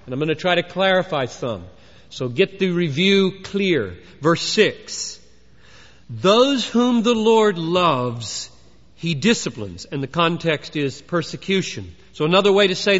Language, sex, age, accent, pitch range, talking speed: English, male, 40-59, American, 180-235 Hz, 150 wpm